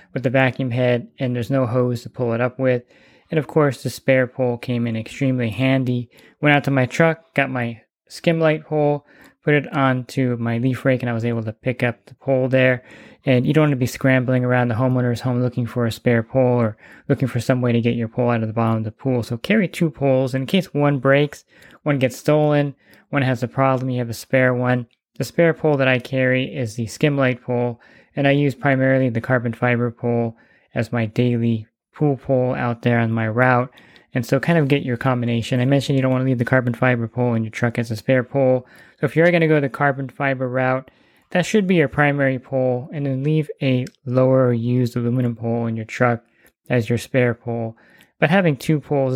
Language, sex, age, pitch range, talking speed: English, male, 20-39, 120-140 Hz, 230 wpm